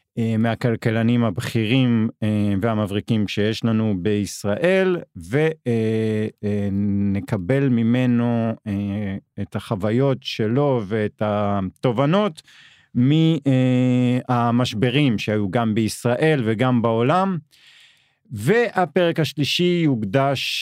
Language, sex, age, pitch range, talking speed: Hebrew, male, 40-59, 110-145 Hz, 65 wpm